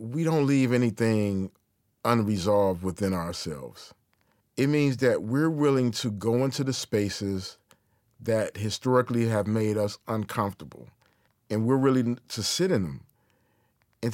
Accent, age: American, 40-59